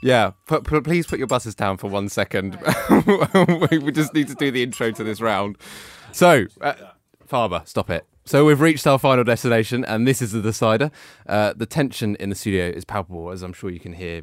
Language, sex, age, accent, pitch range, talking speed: English, male, 20-39, British, 95-135 Hz, 205 wpm